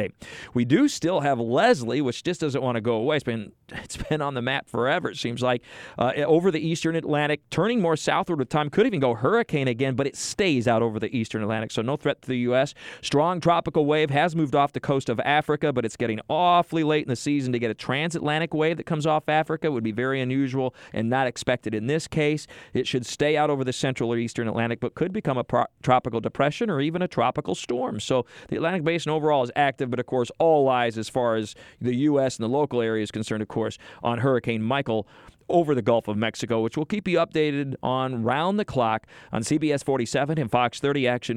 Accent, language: American, English